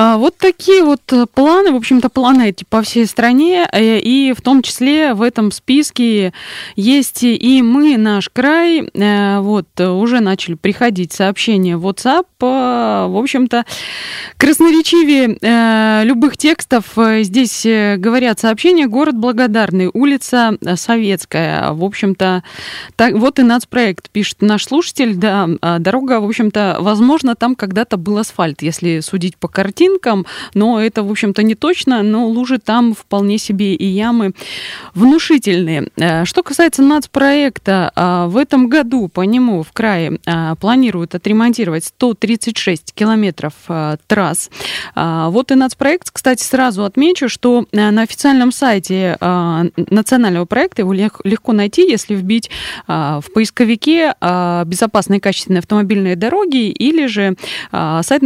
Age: 20-39